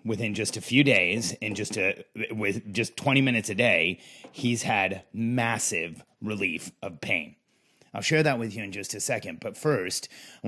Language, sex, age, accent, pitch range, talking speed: English, male, 30-49, American, 110-135 Hz, 185 wpm